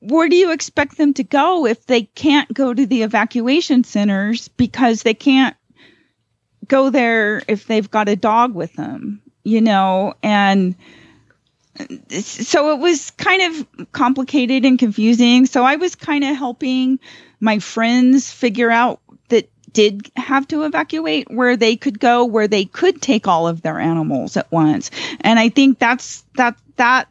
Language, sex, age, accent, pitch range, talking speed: English, female, 30-49, American, 210-265 Hz, 160 wpm